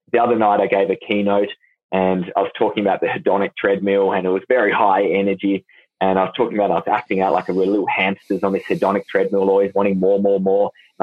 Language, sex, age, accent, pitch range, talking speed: English, male, 20-39, Australian, 95-120 Hz, 245 wpm